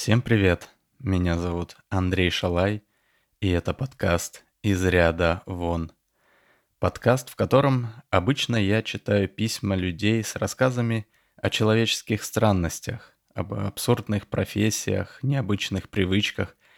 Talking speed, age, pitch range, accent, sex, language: 105 wpm, 20-39, 95-110 Hz, native, male, Russian